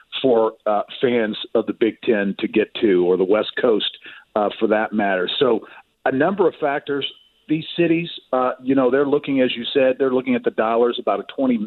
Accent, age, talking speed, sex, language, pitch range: American, 50-69, 210 wpm, male, English, 110-140 Hz